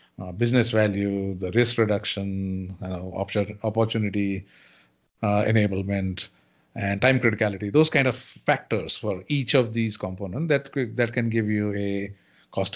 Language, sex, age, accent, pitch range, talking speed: English, male, 50-69, Indian, 105-135 Hz, 140 wpm